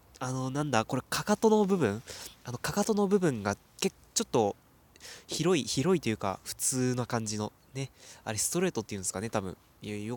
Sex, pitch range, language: male, 100-140 Hz, Japanese